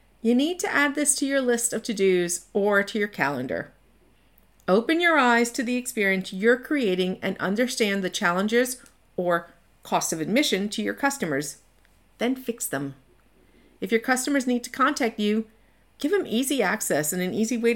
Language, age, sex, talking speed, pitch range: English, 50-69, female, 170 wpm, 185-265 Hz